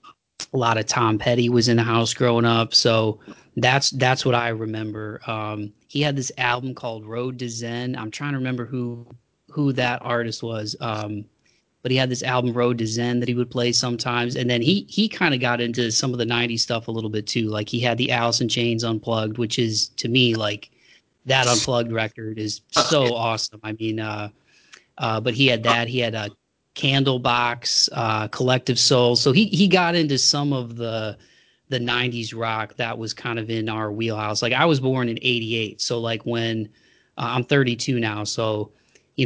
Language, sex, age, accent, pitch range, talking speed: English, male, 20-39, American, 110-125 Hz, 205 wpm